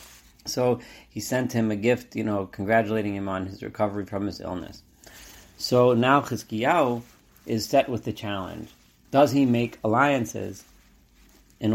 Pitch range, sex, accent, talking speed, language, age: 95-115 Hz, male, American, 150 wpm, English, 40-59